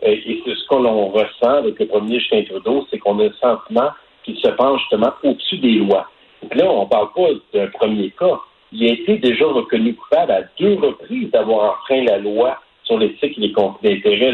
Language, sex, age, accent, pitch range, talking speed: French, male, 60-79, French, 115-190 Hz, 210 wpm